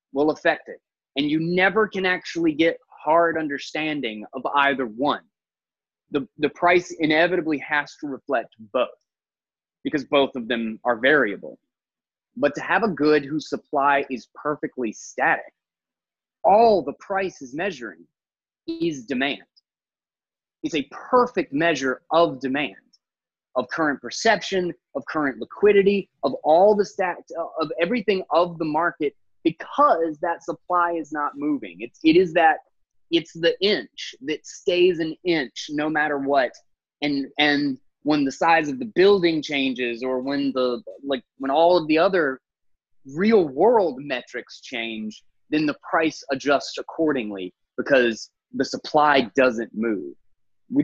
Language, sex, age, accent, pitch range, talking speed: English, male, 20-39, American, 140-180 Hz, 140 wpm